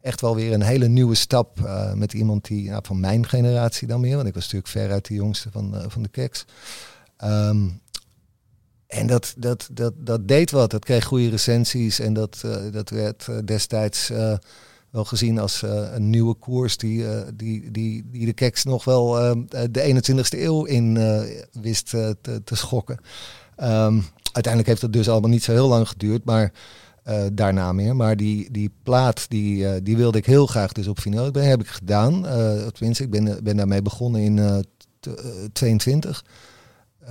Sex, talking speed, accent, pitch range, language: male, 195 wpm, Dutch, 105-120 Hz, English